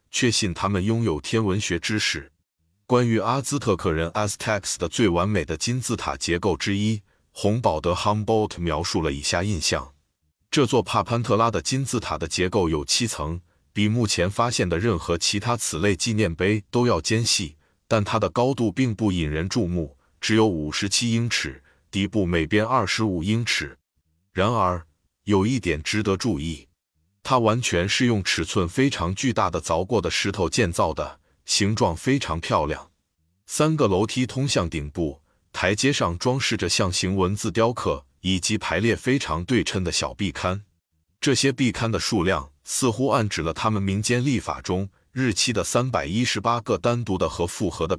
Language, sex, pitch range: Chinese, male, 85-115 Hz